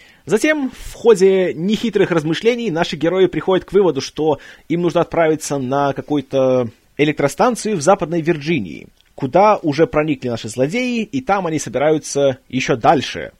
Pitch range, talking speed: 145-205 Hz, 140 wpm